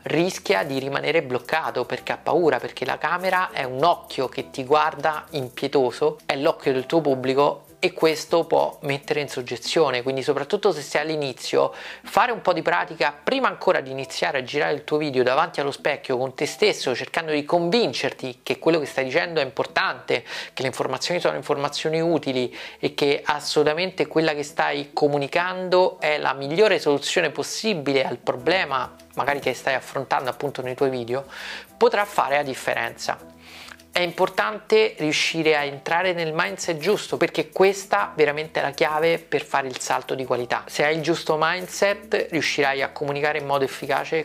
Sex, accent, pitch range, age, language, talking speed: male, native, 140-170 Hz, 30-49, Italian, 170 wpm